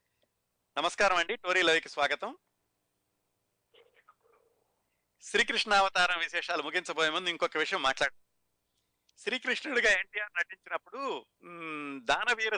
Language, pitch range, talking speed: Telugu, 145-185 Hz, 75 wpm